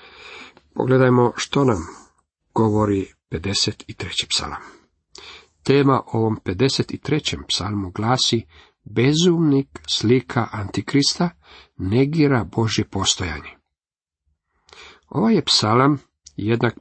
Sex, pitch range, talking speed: male, 100-135 Hz, 75 wpm